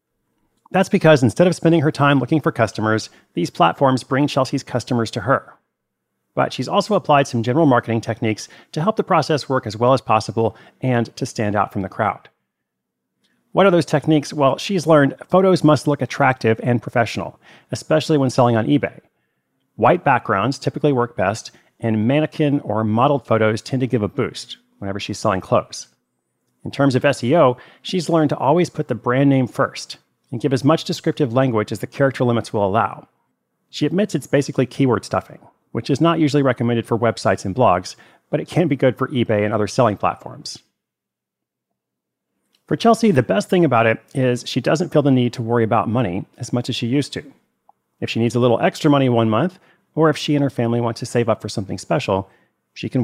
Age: 30-49